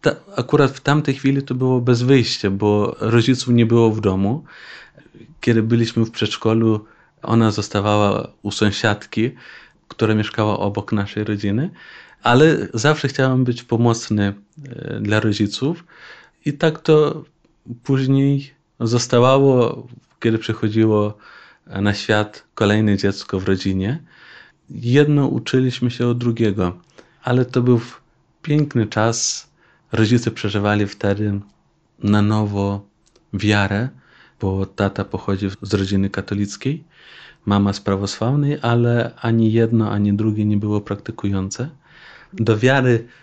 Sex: male